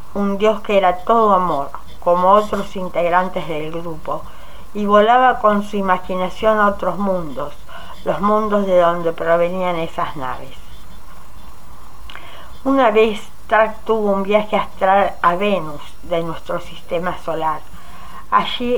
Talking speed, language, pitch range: 130 wpm, Spanish, 175-210 Hz